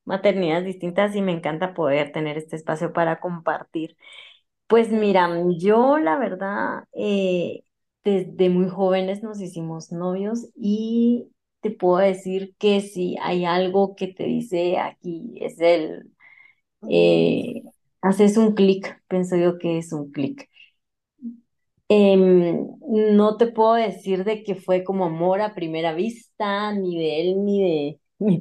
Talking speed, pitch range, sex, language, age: 140 wpm, 175-215 Hz, female, Spanish, 20-39